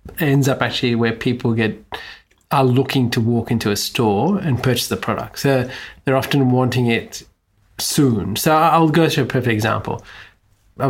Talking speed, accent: 170 wpm, Australian